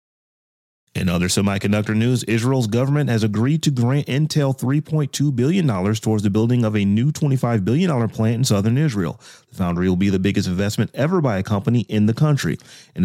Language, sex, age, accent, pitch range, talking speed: English, male, 30-49, American, 105-135 Hz, 185 wpm